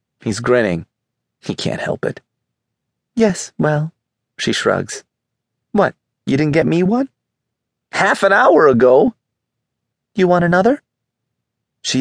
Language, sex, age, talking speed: English, male, 30-49, 120 wpm